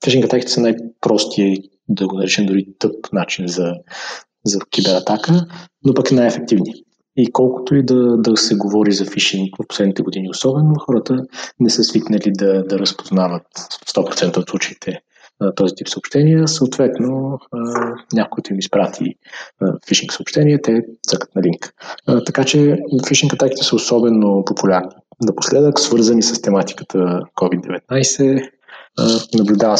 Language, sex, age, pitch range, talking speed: English, male, 20-39, 95-125 Hz, 125 wpm